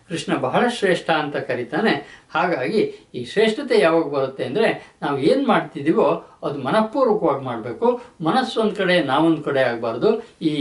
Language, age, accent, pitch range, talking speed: Kannada, 60-79, native, 135-180 Hz, 130 wpm